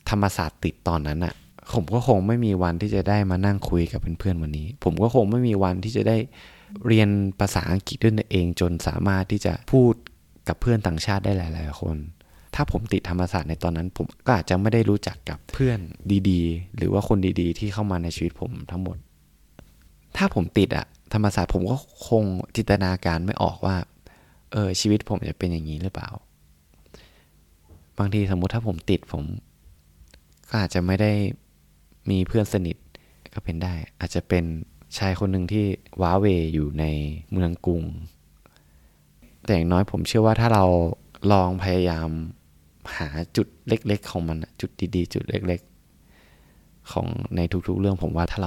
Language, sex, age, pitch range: Thai, male, 20-39, 80-105 Hz